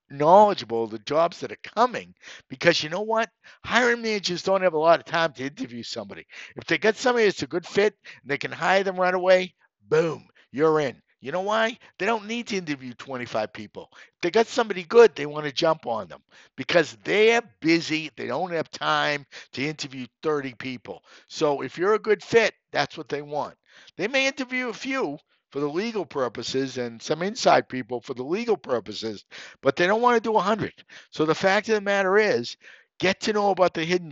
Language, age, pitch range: English, 50-69, 135-205 Hz